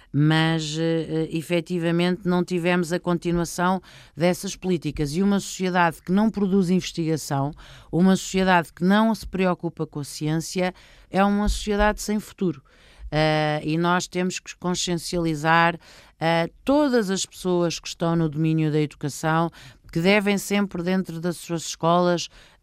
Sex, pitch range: female, 160-185 Hz